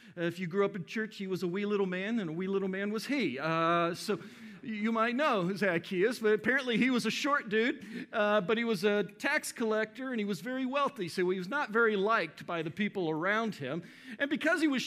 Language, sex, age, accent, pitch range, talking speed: English, male, 50-69, American, 190-235 Hz, 240 wpm